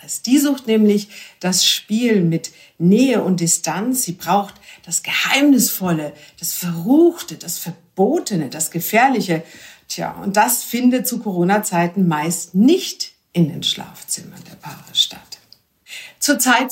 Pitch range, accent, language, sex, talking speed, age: 180-250 Hz, German, German, female, 120 wpm, 60-79